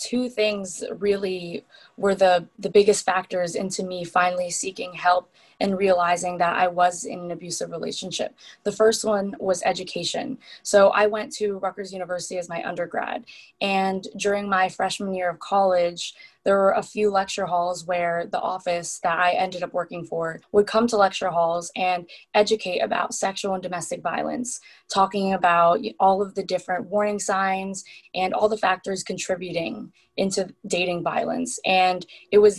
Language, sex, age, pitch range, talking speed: English, female, 20-39, 180-210 Hz, 165 wpm